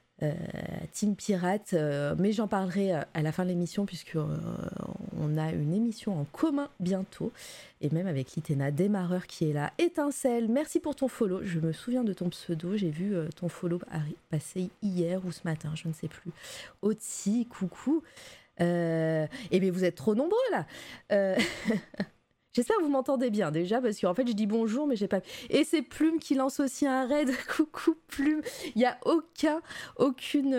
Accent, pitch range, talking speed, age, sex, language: French, 175-260 Hz, 185 wpm, 20-39, female, French